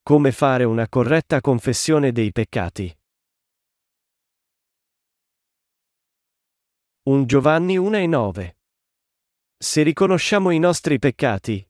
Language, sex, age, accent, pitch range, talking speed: Italian, male, 40-59, native, 125-160 Hz, 80 wpm